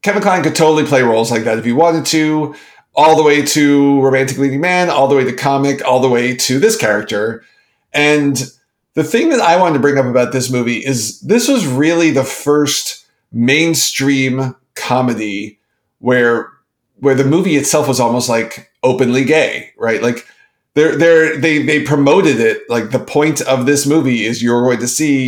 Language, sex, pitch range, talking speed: English, male, 125-155 Hz, 190 wpm